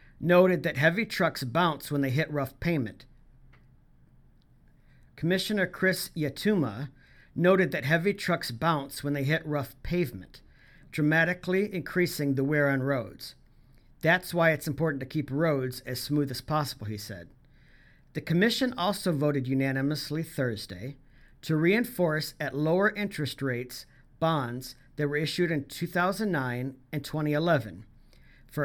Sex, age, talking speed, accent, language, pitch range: male, 50-69, 130 wpm, American, English, 130-165 Hz